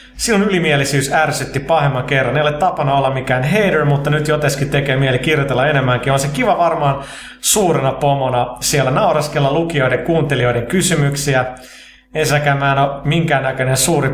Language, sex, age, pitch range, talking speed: Finnish, male, 30-49, 130-160 Hz, 150 wpm